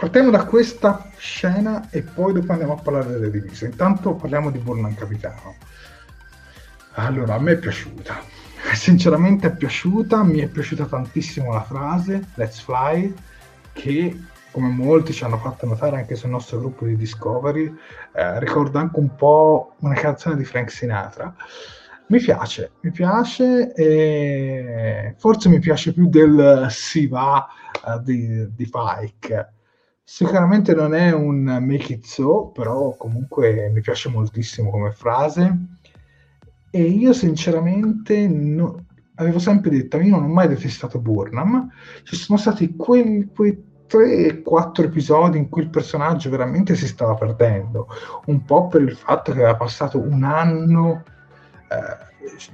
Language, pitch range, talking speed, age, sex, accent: Italian, 120-170 Hz, 145 wpm, 30-49, male, native